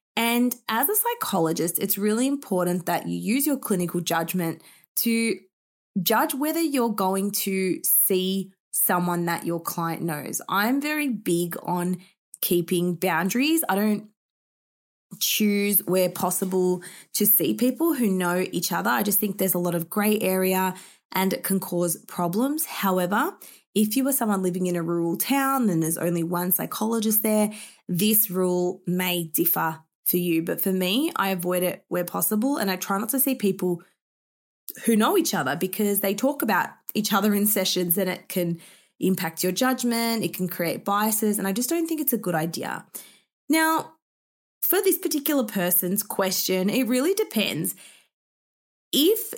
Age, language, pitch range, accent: 20-39, English, 180-235 Hz, Australian